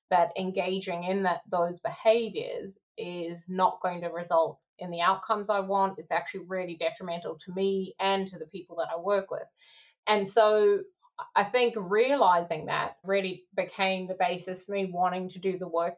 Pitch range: 175-220 Hz